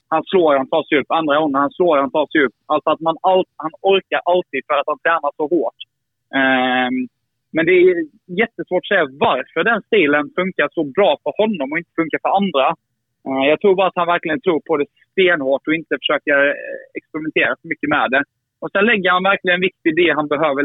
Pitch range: 135-165 Hz